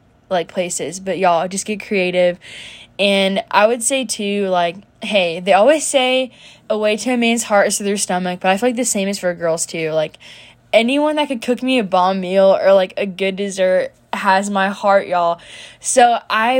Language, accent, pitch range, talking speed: English, American, 180-220 Hz, 205 wpm